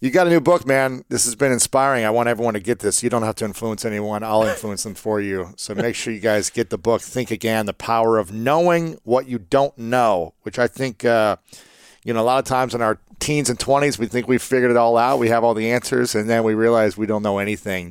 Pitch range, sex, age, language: 105-120 Hz, male, 40-59, English